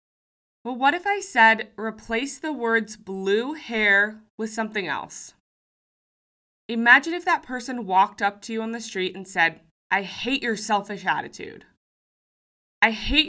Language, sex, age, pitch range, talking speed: English, female, 20-39, 205-270 Hz, 150 wpm